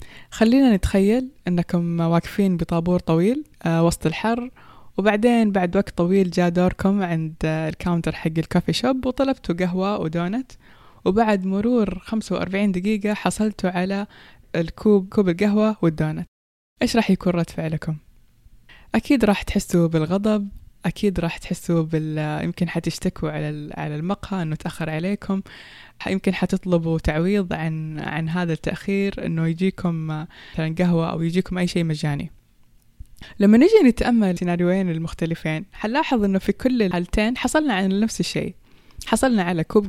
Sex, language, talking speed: female, Persian, 130 wpm